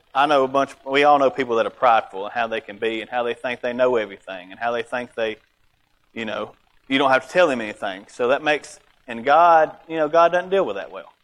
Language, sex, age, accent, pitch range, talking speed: English, male, 30-49, American, 120-145 Hz, 265 wpm